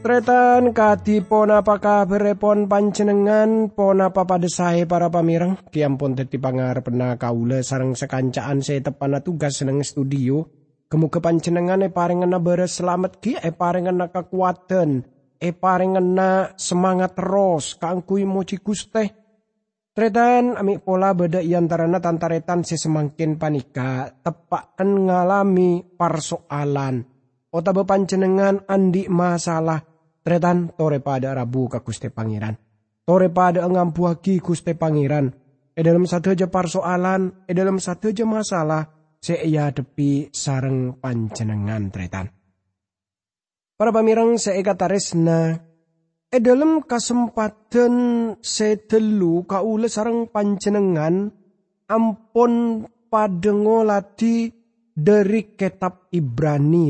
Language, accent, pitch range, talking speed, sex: English, Indonesian, 145-200 Hz, 100 wpm, male